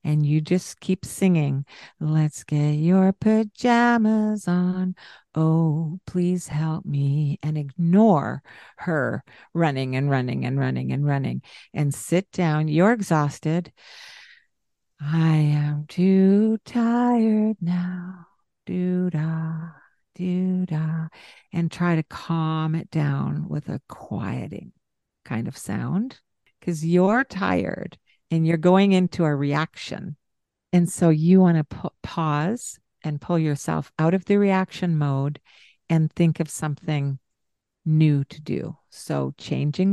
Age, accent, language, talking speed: 50-69, American, English, 125 wpm